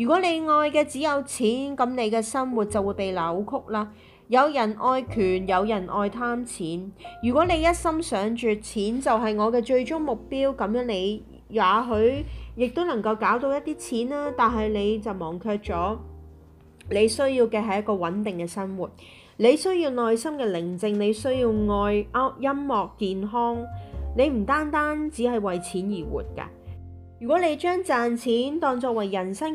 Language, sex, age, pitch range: Chinese, female, 30-49, 195-255 Hz